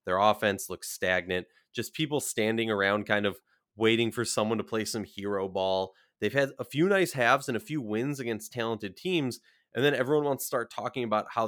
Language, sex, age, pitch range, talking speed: English, male, 20-39, 105-130 Hz, 210 wpm